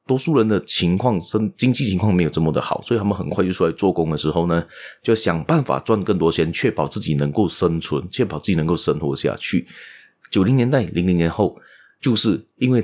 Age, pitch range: 30-49, 85-125 Hz